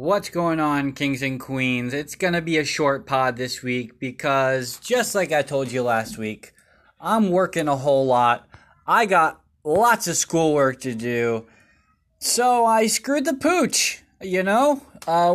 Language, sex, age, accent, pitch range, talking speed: English, male, 20-39, American, 135-205 Hz, 170 wpm